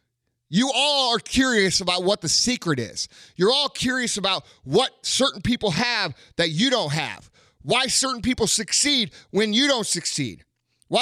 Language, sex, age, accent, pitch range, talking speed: English, male, 30-49, American, 135-225 Hz, 165 wpm